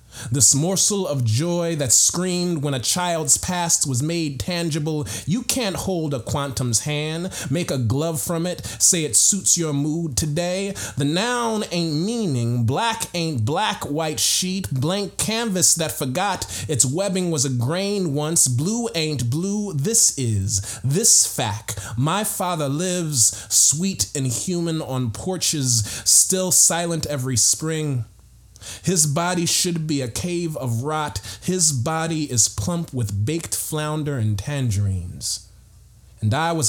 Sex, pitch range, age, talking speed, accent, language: male, 115-165 Hz, 30-49, 145 wpm, American, English